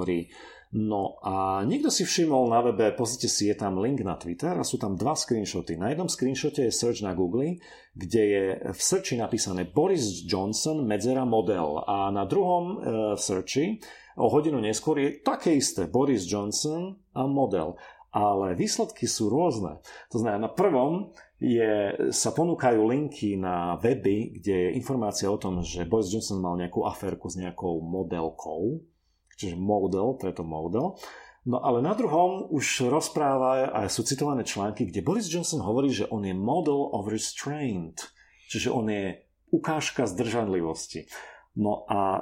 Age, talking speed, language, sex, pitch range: 40-59, 155 wpm, Slovak, male, 95-140 Hz